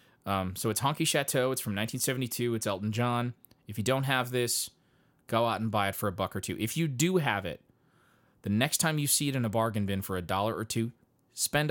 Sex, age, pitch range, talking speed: male, 30-49, 105-130 Hz, 240 wpm